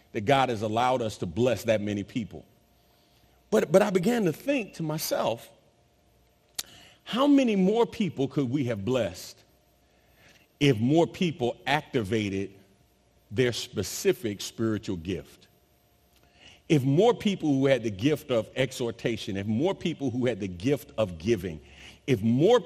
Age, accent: 40-59, American